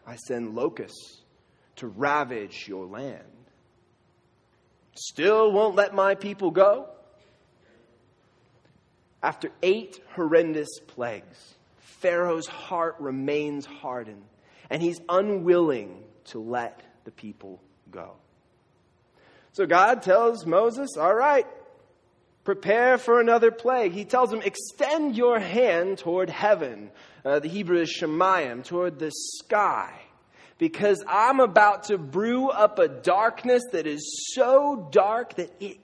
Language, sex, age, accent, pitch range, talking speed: English, male, 20-39, American, 155-225 Hz, 115 wpm